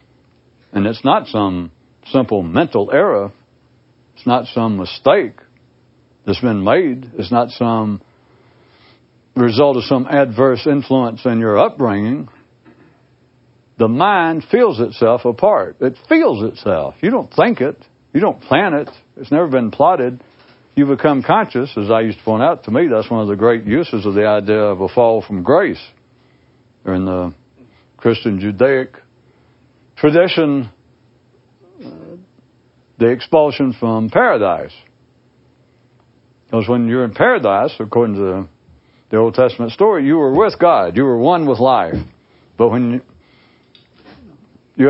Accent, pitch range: American, 110-130 Hz